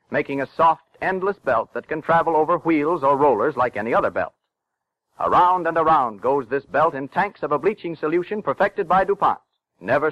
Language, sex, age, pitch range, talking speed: English, male, 50-69, 145-185 Hz, 190 wpm